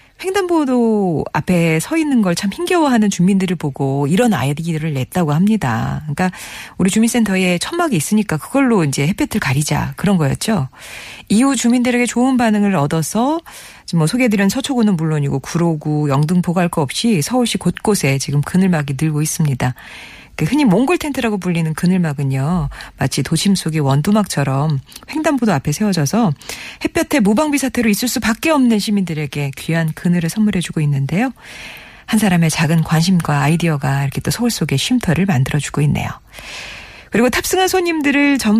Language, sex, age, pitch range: Korean, female, 40-59, 150-230 Hz